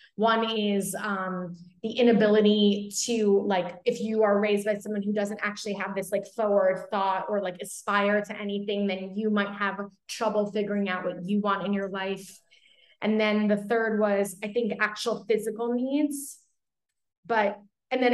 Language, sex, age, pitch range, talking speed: English, female, 20-39, 200-240 Hz, 170 wpm